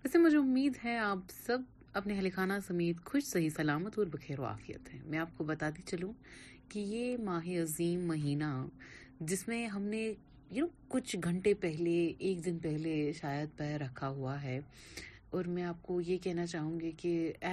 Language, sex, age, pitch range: Urdu, female, 30-49, 155-205 Hz